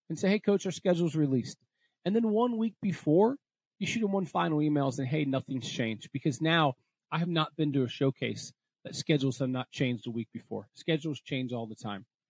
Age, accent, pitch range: 40-59, American, 135-185 Hz